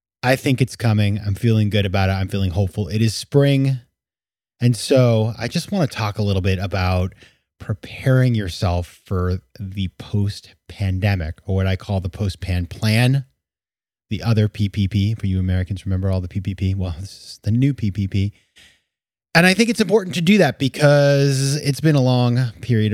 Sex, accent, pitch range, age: male, American, 95-125 Hz, 30-49